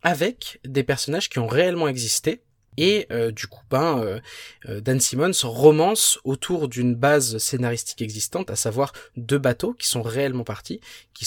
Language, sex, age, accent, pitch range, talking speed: French, male, 20-39, French, 115-140 Hz, 160 wpm